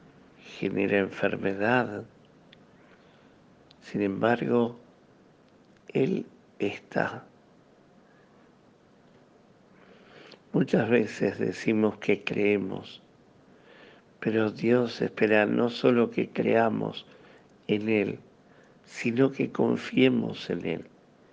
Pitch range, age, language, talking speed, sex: 100-115 Hz, 60-79, Spanish, 70 wpm, male